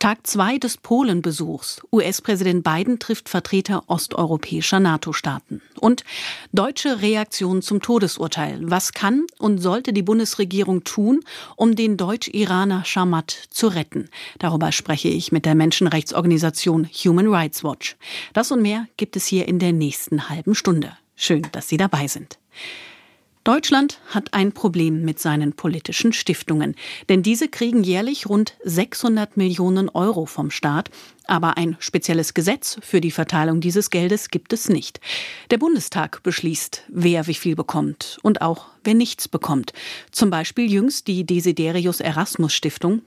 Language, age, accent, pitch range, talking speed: German, 40-59, German, 170-220 Hz, 140 wpm